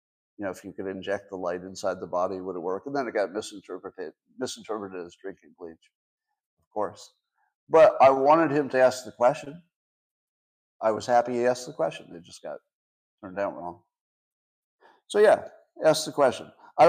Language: English